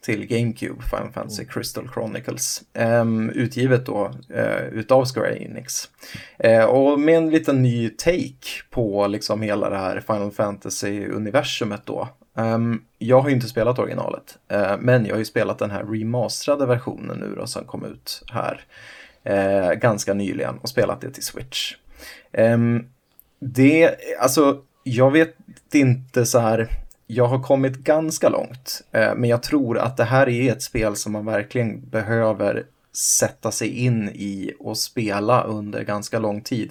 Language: Swedish